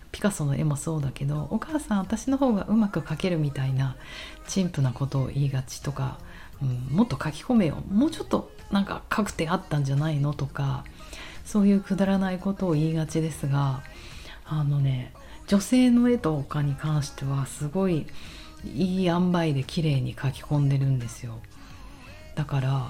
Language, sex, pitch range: Japanese, female, 140-185 Hz